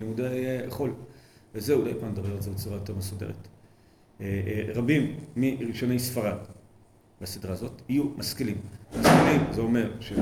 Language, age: Hebrew, 40-59